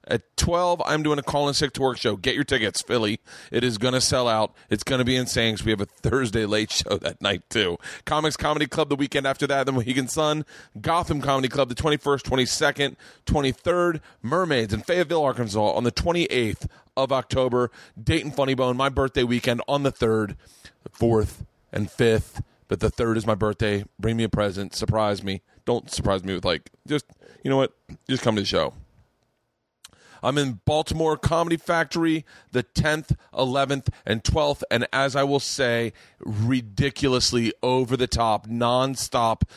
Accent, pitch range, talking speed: American, 110-140 Hz, 180 wpm